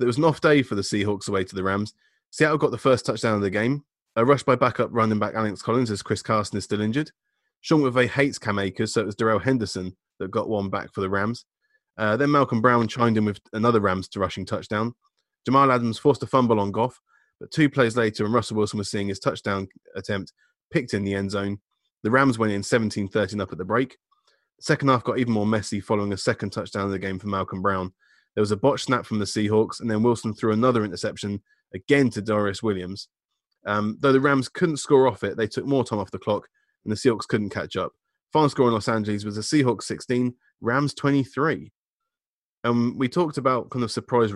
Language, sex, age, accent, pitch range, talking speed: English, male, 20-39, British, 105-125 Hz, 230 wpm